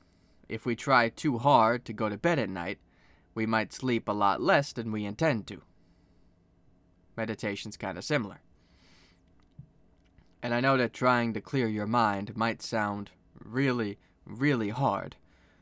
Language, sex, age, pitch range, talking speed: English, male, 20-39, 90-120 Hz, 150 wpm